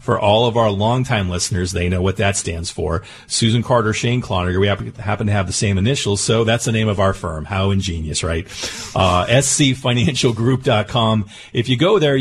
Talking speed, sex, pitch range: 190 wpm, male, 100-125 Hz